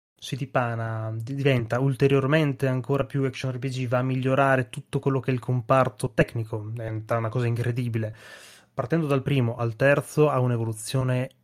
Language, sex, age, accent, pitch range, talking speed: Italian, male, 20-39, native, 110-130 Hz, 150 wpm